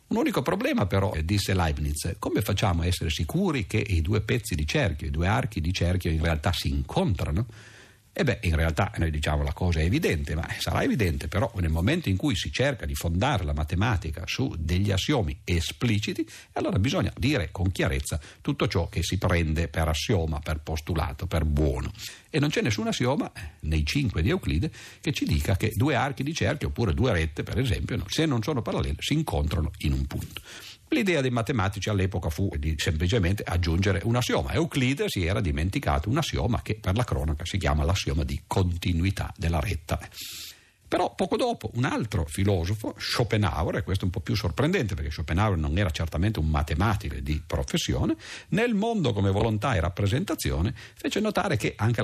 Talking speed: 185 wpm